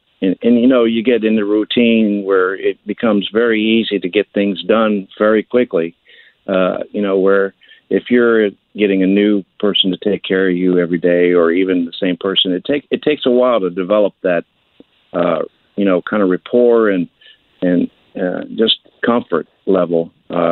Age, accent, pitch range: 50-69, American, 90-110 Hz